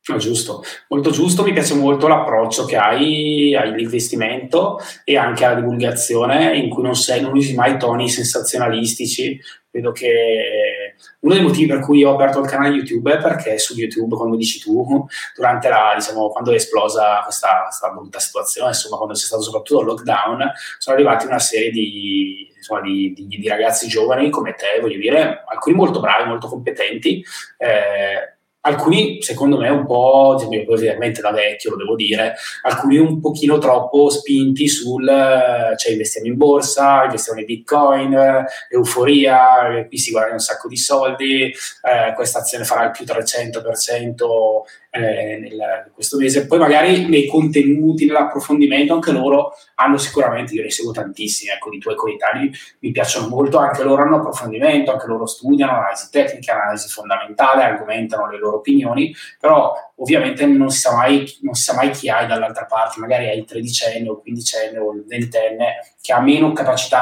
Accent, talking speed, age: native, 165 wpm, 20-39